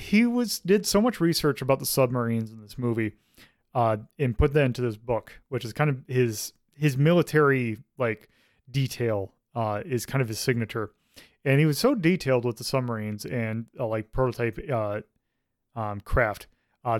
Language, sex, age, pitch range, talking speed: English, male, 30-49, 110-140 Hz, 175 wpm